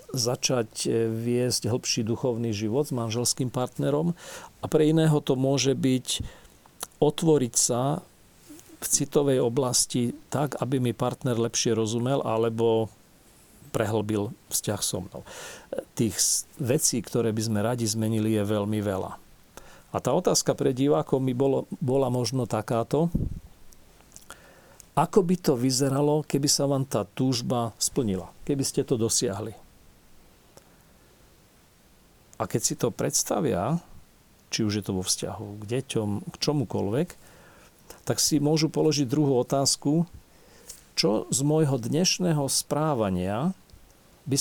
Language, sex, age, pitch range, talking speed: Slovak, male, 40-59, 110-140 Hz, 120 wpm